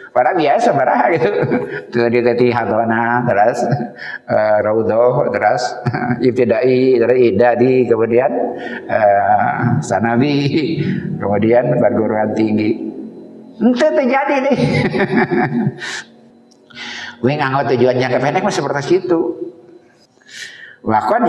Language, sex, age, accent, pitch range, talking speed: Indonesian, male, 50-69, native, 120-170 Hz, 80 wpm